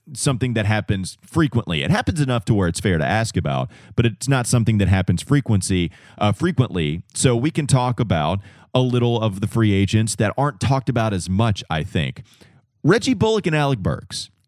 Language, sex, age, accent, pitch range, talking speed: English, male, 30-49, American, 100-135 Hz, 195 wpm